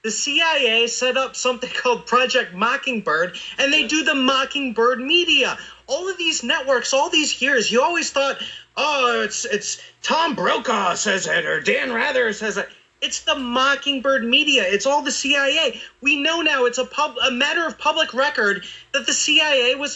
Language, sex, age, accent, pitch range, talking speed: English, male, 30-49, American, 240-315 Hz, 175 wpm